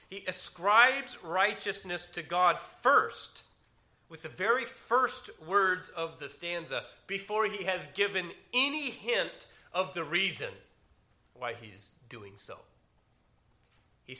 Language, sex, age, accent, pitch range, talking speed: English, male, 40-59, American, 140-205 Hz, 120 wpm